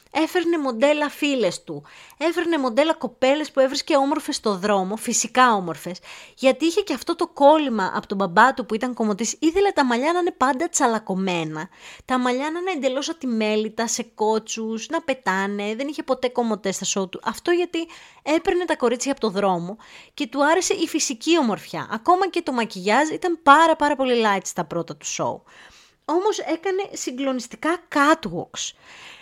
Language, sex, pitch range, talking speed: Greek, female, 205-305 Hz, 170 wpm